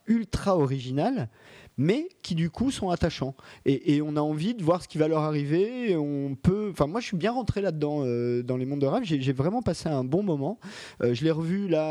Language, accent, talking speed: French, French, 240 wpm